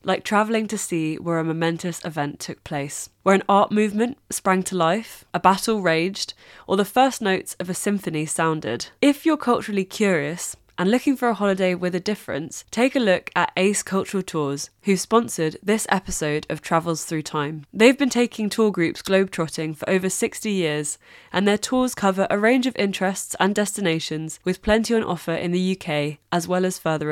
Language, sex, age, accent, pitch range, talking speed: English, female, 20-39, British, 165-210 Hz, 190 wpm